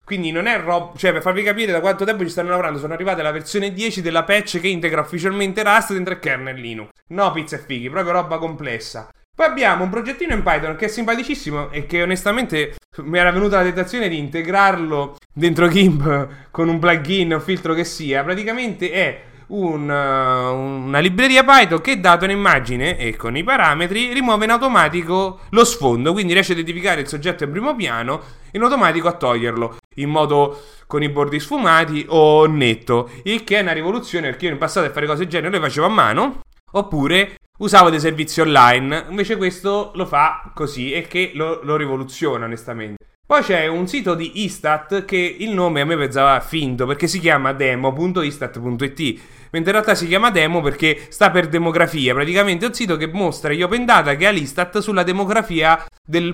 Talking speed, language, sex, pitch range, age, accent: 190 wpm, English, male, 145-195 Hz, 30-49, Italian